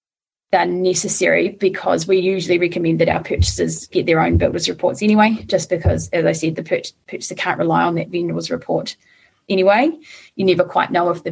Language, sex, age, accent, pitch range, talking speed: English, female, 20-39, Australian, 170-195 Hz, 190 wpm